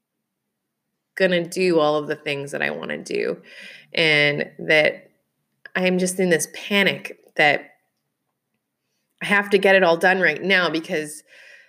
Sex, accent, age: female, American, 20-39